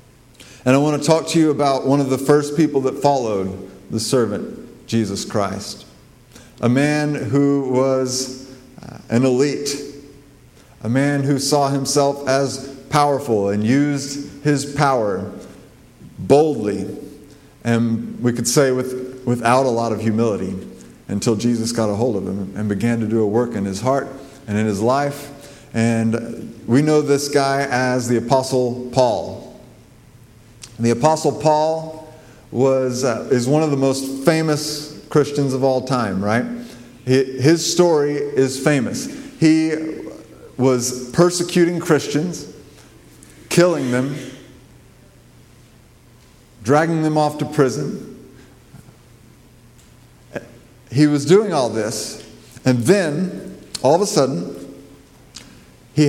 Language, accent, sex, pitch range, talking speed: English, American, male, 120-145 Hz, 130 wpm